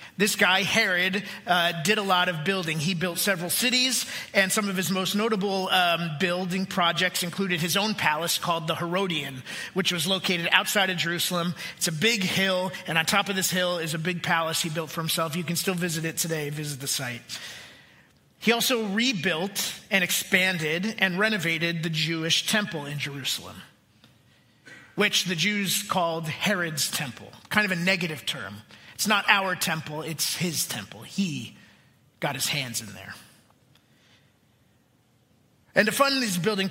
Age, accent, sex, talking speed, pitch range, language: 30-49, American, male, 170 wpm, 165-195 Hz, English